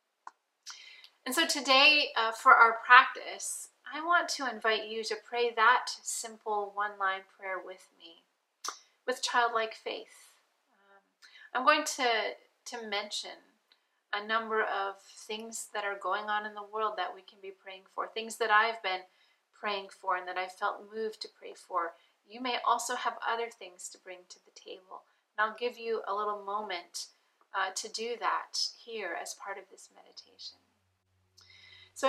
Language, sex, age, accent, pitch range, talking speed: English, female, 30-49, American, 180-245 Hz, 165 wpm